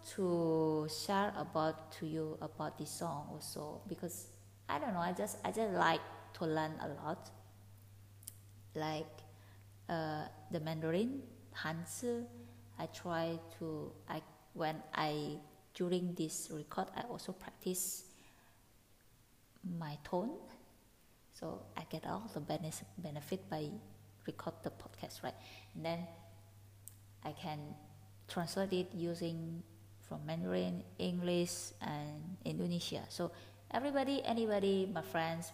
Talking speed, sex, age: 120 wpm, female, 20-39